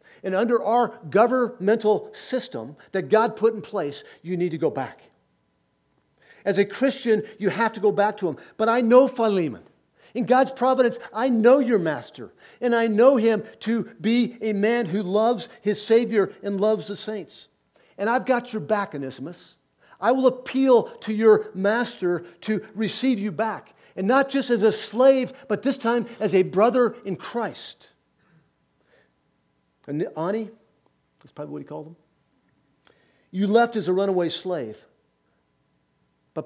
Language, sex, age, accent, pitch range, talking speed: English, male, 50-69, American, 165-230 Hz, 160 wpm